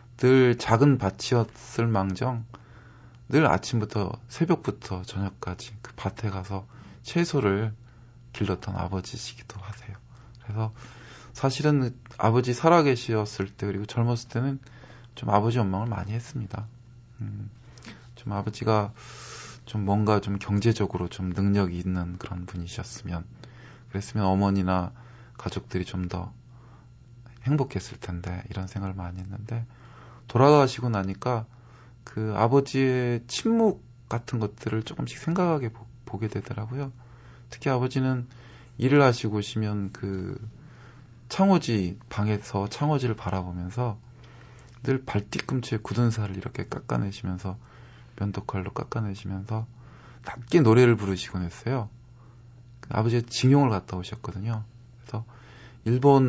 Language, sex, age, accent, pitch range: Korean, male, 20-39, native, 105-125 Hz